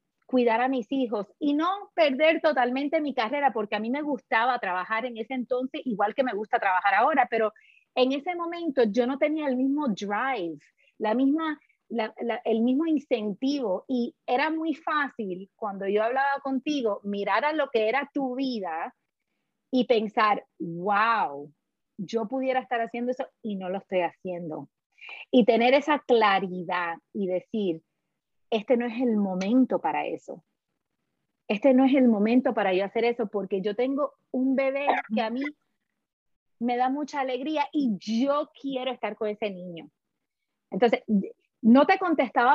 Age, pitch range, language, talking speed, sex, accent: 30-49, 210-275 Hz, Spanish, 165 wpm, female, American